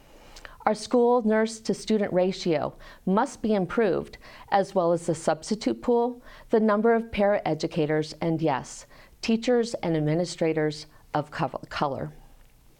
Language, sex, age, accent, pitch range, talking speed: English, female, 40-59, American, 175-230 Hz, 115 wpm